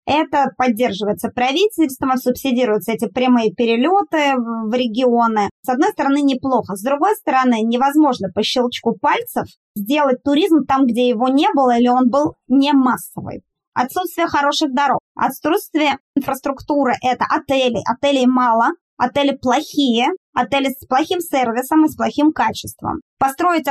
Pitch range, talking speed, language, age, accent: 245-285 Hz, 135 wpm, Russian, 20-39, native